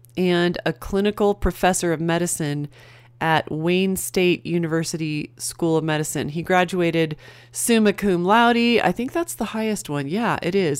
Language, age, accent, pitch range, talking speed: English, 30-49, American, 150-190 Hz, 150 wpm